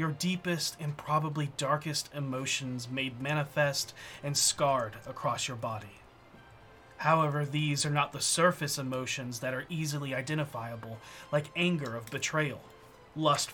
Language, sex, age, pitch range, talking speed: English, male, 30-49, 130-150 Hz, 130 wpm